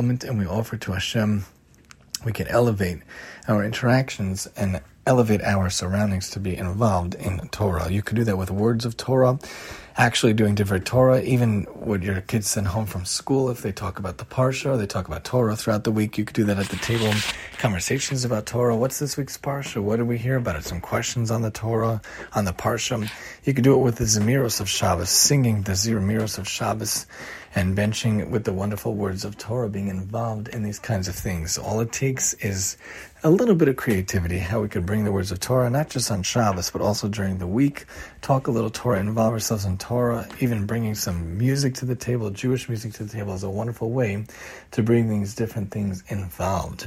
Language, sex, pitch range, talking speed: English, male, 100-120 Hz, 215 wpm